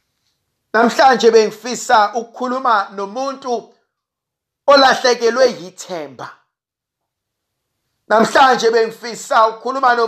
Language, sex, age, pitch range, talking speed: English, male, 50-69, 225-285 Hz, 70 wpm